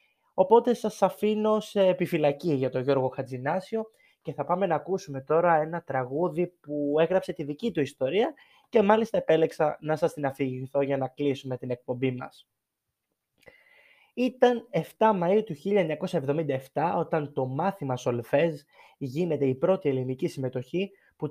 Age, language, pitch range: 20-39, Greek, 140-195 Hz